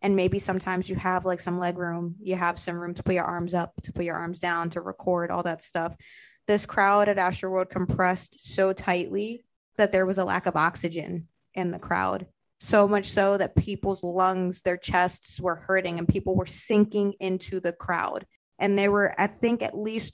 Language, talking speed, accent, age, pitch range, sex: English, 205 wpm, American, 20-39, 180-200 Hz, female